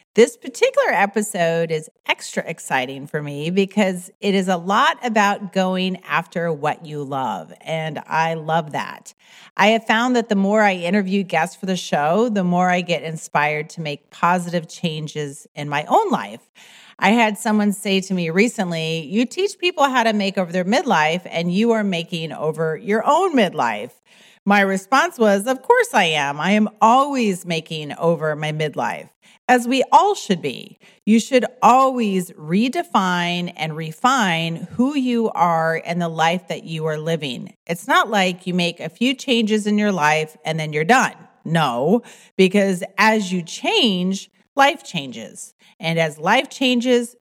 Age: 40-59